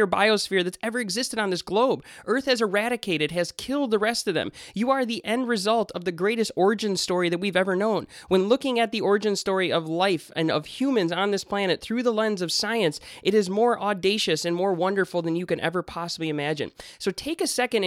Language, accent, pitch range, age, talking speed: English, American, 170-215 Hz, 20-39, 220 wpm